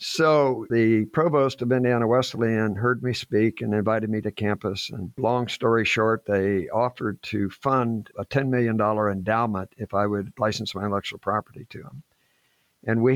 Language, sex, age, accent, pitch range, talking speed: English, male, 60-79, American, 105-130 Hz, 170 wpm